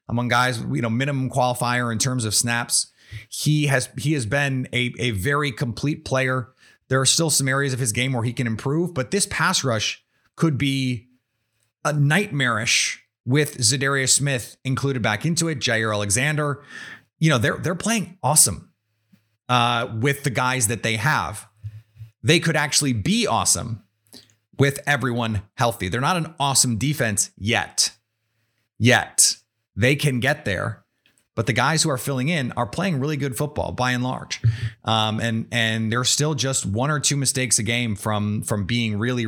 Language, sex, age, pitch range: English, male, 30-49, 115-145 Hz